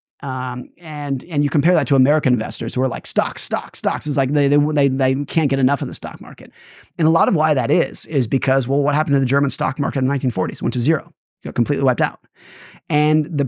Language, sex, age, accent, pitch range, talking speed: English, male, 30-49, American, 130-160 Hz, 265 wpm